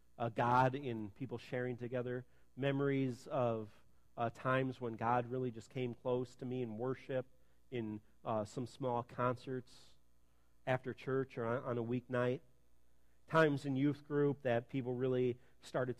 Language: English